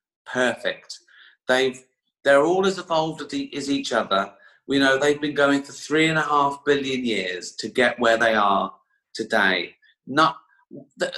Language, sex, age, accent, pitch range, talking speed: English, male, 40-59, British, 130-195 Hz, 155 wpm